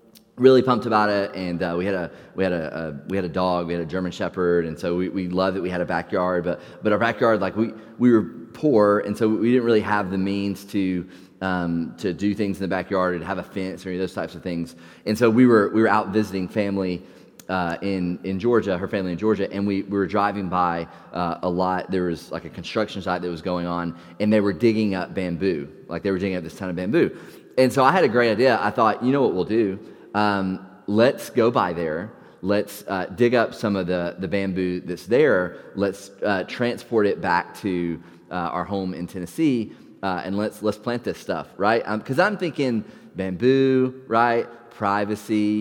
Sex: male